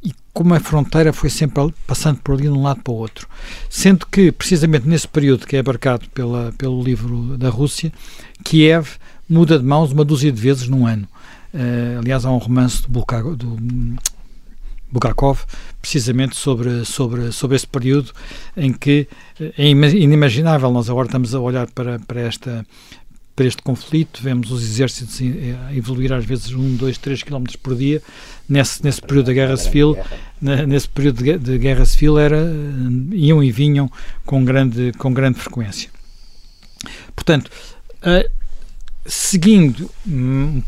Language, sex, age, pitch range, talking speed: Portuguese, male, 50-69, 125-150 Hz, 155 wpm